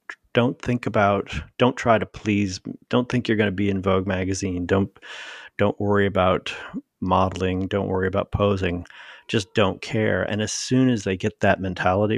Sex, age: male, 40-59